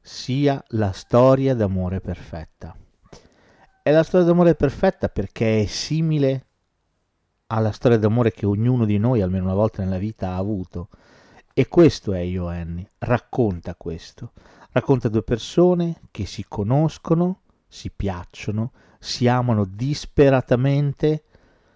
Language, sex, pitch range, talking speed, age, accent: Italian, male, 95-125 Hz, 120 wpm, 40-59, native